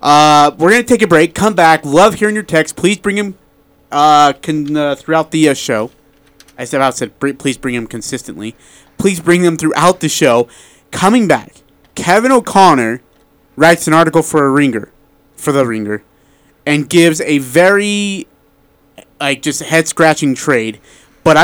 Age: 30-49